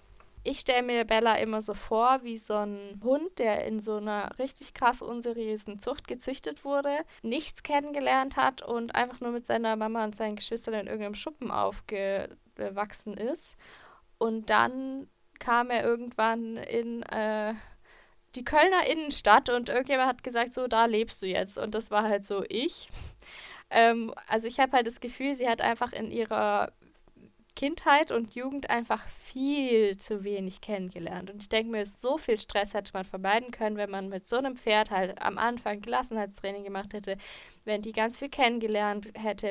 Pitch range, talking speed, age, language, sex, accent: 210-245 Hz, 170 wpm, 10-29, German, female, German